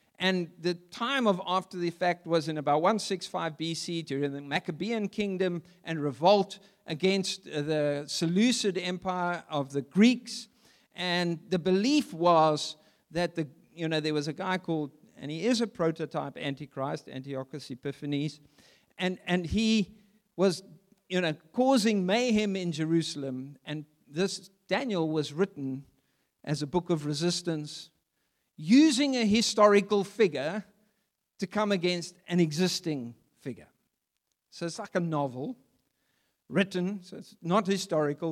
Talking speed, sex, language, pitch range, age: 135 wpm, male, English, 145-195 Hz, 50-69